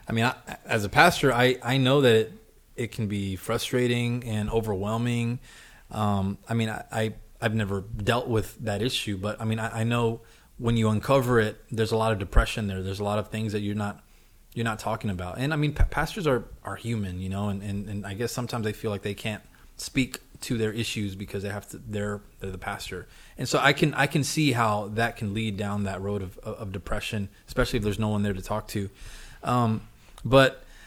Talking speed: 225 wpm